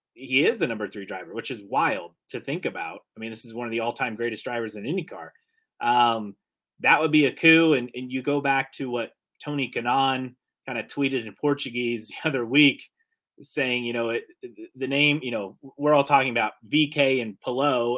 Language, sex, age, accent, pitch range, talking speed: English, male, 30-49, American, 120-145 Hz, 215 wpm